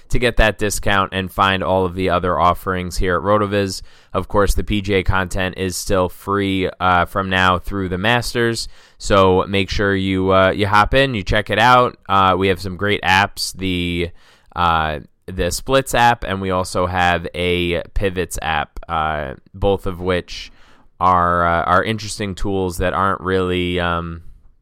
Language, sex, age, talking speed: English, male, 20-39, 175 wpm